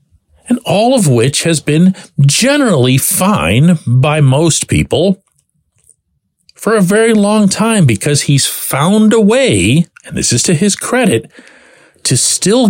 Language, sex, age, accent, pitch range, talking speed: English, male, 50-69, American, 110-180 Hz, 135 wpm